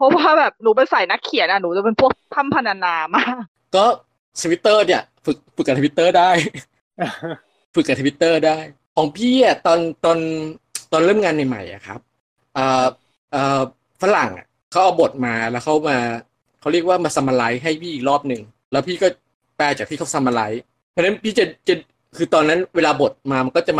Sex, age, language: male, 20-39, Thai